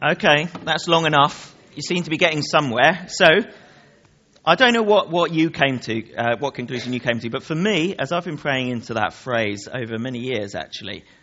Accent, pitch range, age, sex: British, 125-175 Hz, 40-59, male